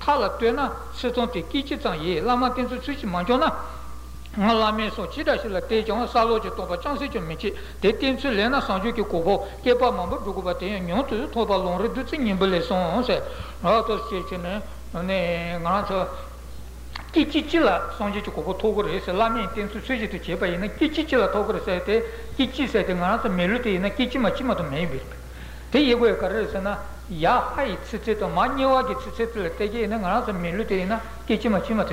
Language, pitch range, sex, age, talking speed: Italian, 180-245 Hz, male, 60-79, 30 wpm